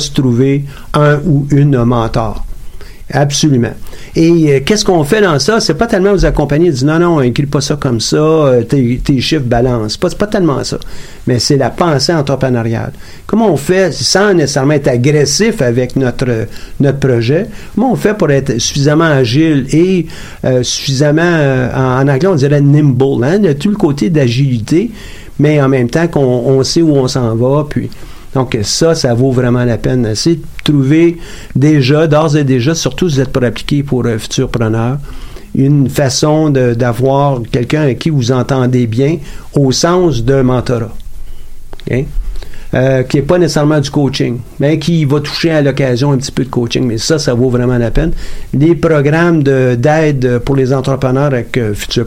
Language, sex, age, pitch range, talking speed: French, male, 50-69, 125-155 Hz, 190 wpm